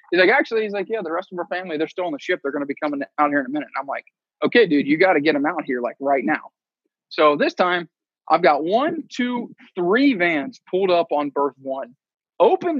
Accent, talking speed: American, 265 wpm